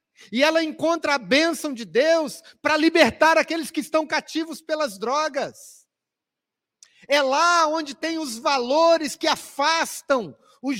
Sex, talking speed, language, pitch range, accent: male, 135 wpm, Portuguese, 280-320 Hz, Brazilian